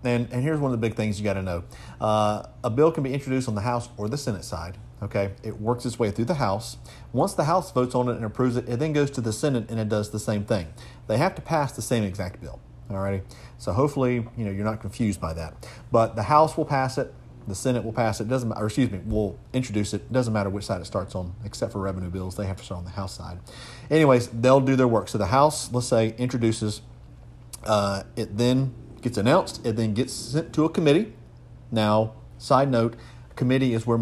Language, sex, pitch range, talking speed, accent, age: English, male, 105-125 Hz, 245 wpm, American, 40-59